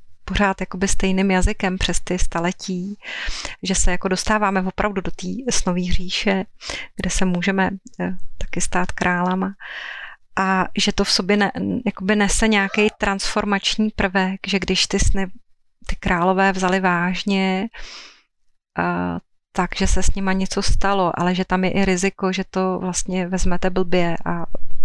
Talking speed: 150 wpm